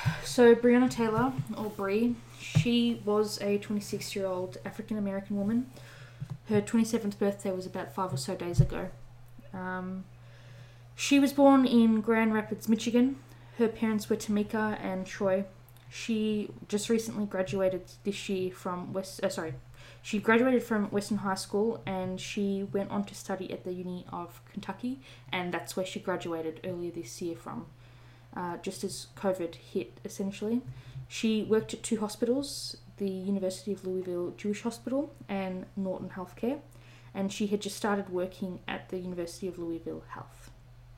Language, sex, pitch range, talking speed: English, female, 175-210 Hz, 150 wpm